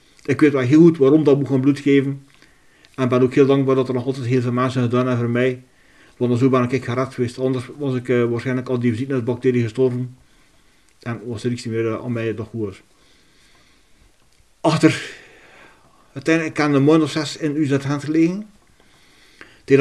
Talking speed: 200 wpm